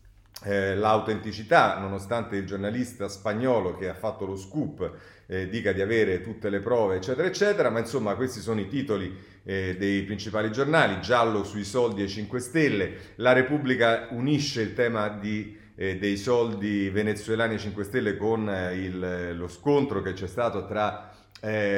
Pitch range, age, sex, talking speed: 100-125 Hz, 40-59, male, 155 wpm